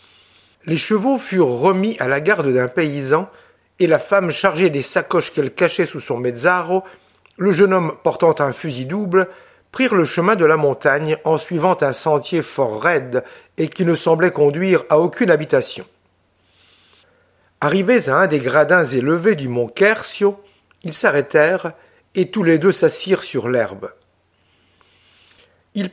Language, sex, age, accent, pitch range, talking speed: French, male, 60-79, French, 135-200 Hz, 155 wpm